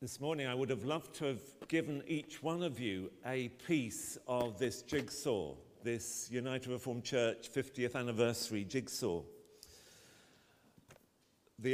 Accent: British